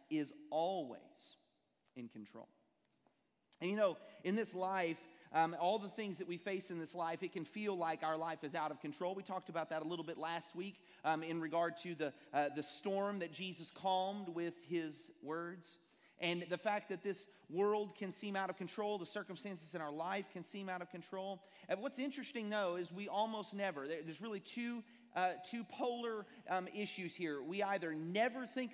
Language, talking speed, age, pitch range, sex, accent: English, 200 wpm, 30-49, 165-200 Hz, male, American